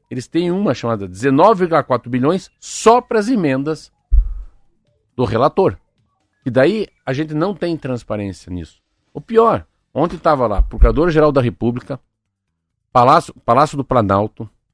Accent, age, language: Brazilian, 50-69, Portuguese